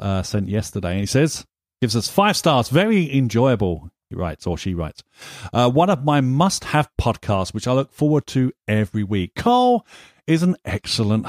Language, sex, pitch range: English, male, 100-135 Hz